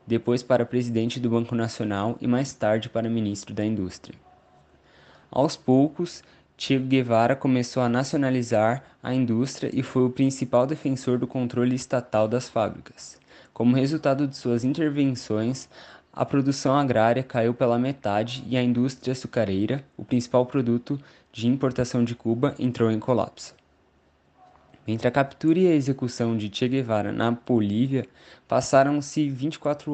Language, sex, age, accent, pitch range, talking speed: Portuguese, male, 20-39, Brazilian, 115-135 Hz, 140 wpm